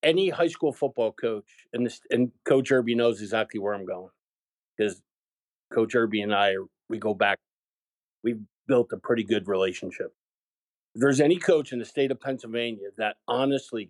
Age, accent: 50-69, American